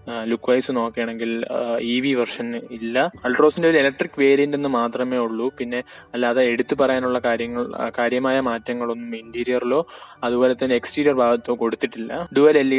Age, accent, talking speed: 20-39, native, 140 wpm